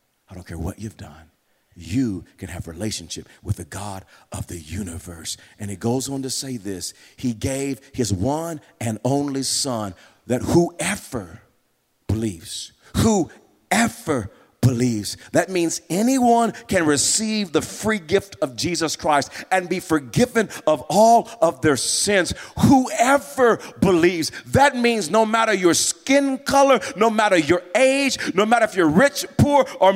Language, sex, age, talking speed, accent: English, male, 40-59, 150 wpm, American